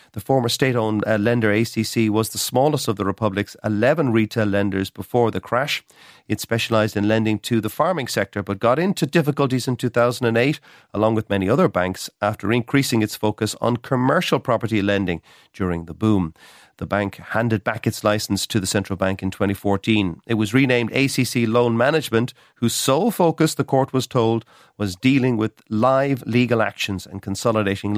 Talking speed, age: 170 wpm, 40-59